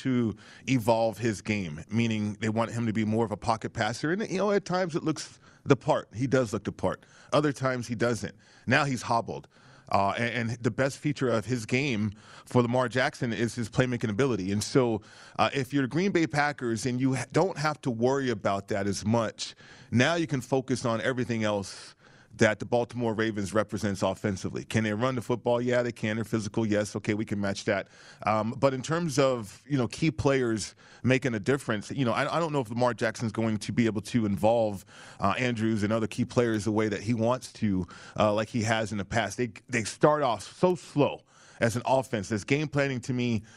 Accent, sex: American, male